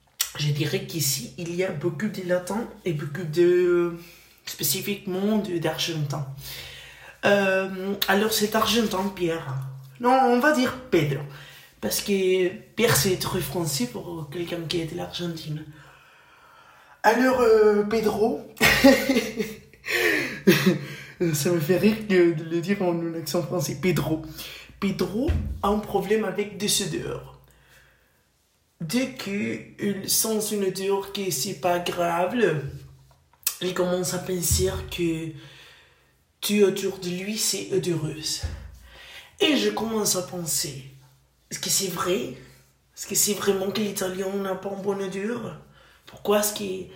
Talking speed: 130 wpm